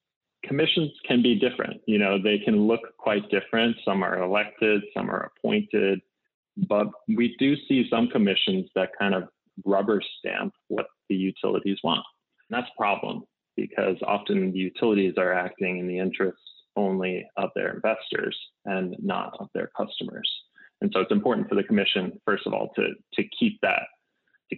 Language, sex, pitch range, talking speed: English, male, 95-110 Hz, 170 wpm